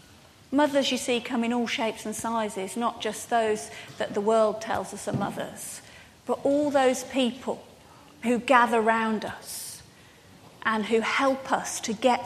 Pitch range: 230-305 Hz